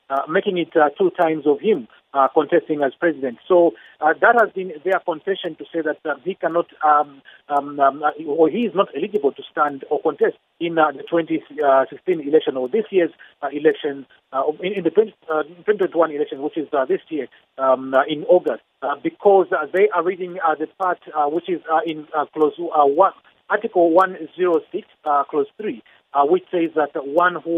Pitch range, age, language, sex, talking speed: 150-195 Hz, 40-59, English, male, 205 wpm